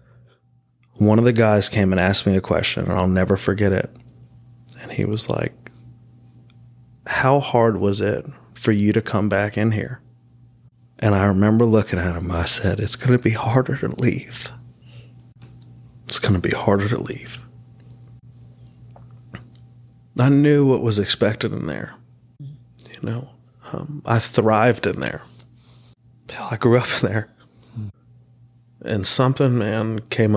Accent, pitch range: American, 110-120 Hz